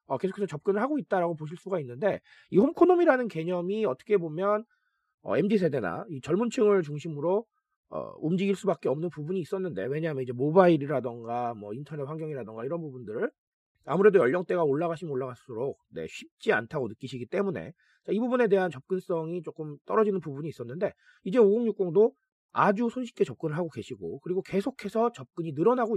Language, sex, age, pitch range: Korean, male, 30-49, 155-225 Hz